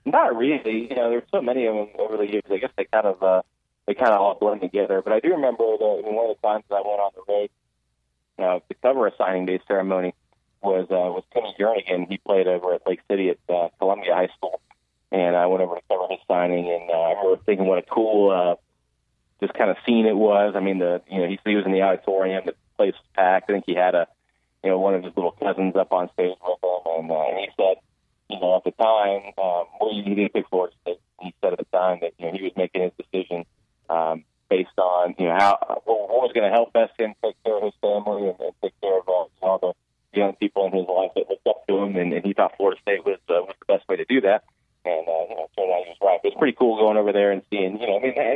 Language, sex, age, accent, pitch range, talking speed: English, male, 30-49, American, 90-110 Hz, 285 wpm